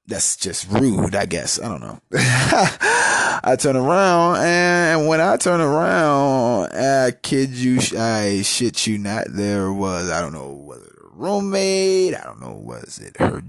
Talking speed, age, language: 170 wpm, 20-39, English